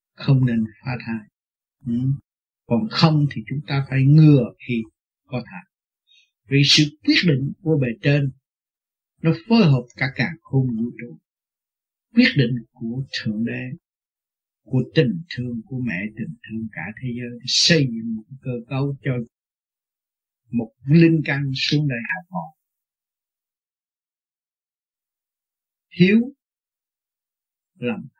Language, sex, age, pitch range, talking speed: Vietnamese, male, 60-79, 125-170 Hz, 130 wpm